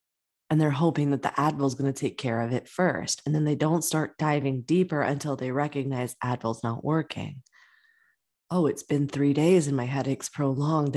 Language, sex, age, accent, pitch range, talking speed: English, female, 20-39, American, 140-175 Hz, 195 wpm